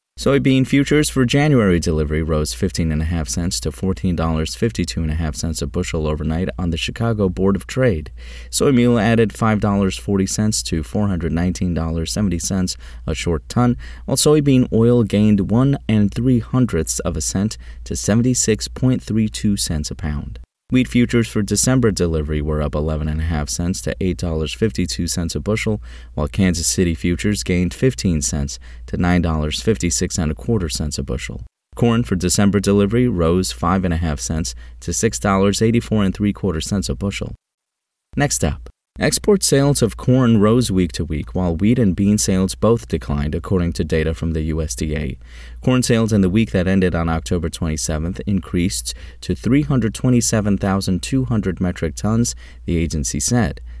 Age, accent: 30-49, American